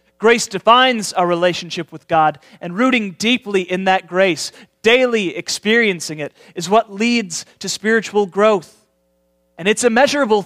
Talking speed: 145 wpm